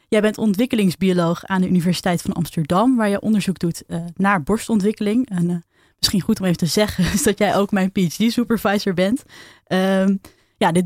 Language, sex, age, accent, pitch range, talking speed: Dutch, female, 20-39, Dutch, 175-210 Hz, 170 wpm